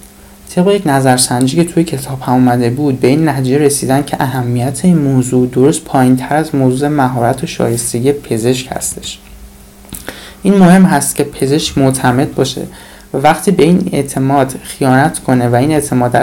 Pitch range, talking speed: 125-150 Hz, 165 wpm